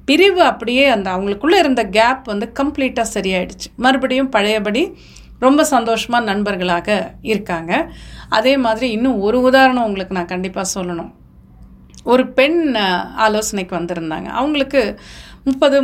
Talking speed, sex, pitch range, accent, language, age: 115 wpm, female, 205-270 Hz, native, Tamil, 40-59